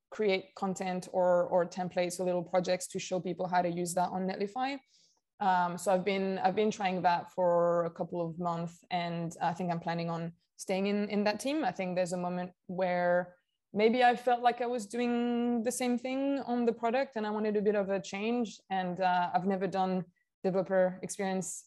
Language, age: English, 20-39